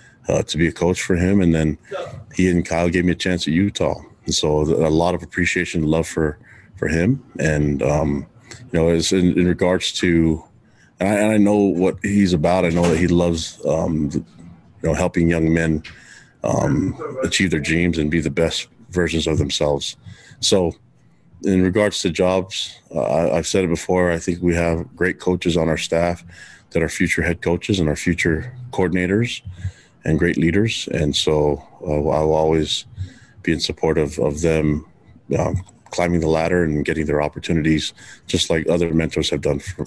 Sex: male